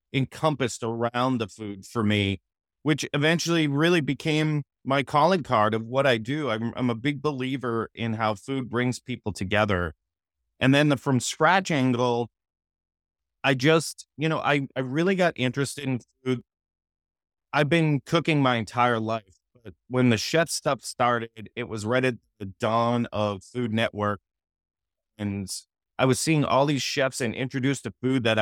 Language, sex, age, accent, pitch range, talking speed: English, male, 30-49, American, 110-140 Hz, 165 wpm